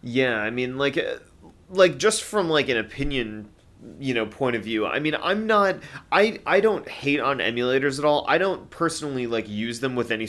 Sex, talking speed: male, 210 wpm